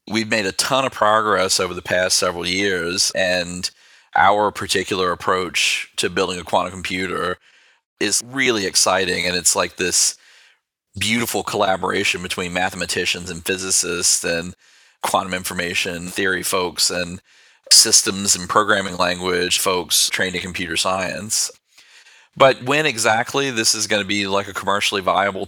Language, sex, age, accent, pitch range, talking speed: English, male, 30-49, American, 95-110 Hz, 140 wpm